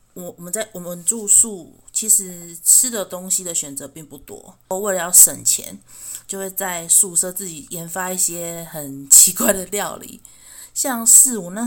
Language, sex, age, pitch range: Chinese, female, 30-49, 160-205 Hz